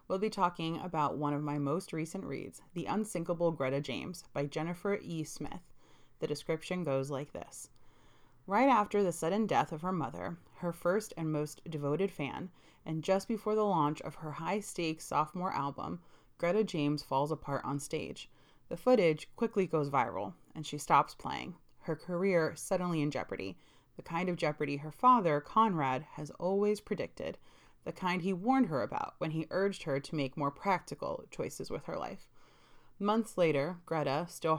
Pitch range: 145-180 Hz